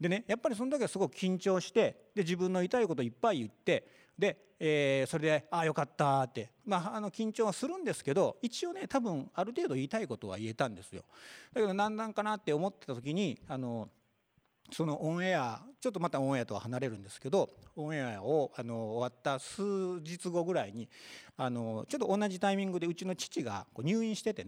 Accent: native